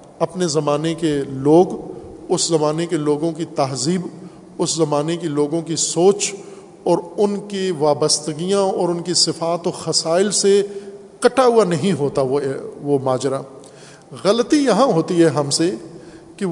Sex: male